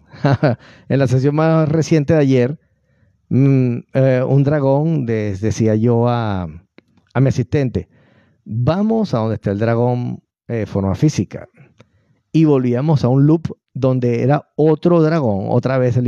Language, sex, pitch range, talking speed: Spanish, male, 115-150 Hz, 140 wpm